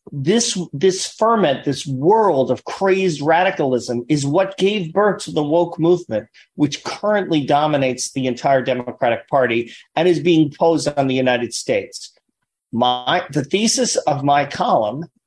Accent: American